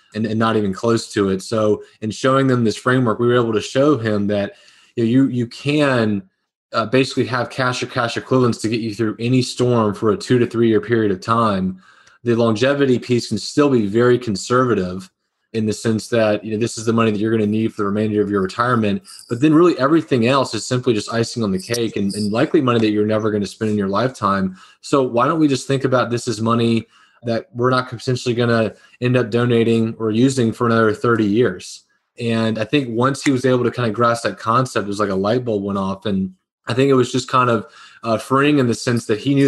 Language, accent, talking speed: English, American, 250 wpm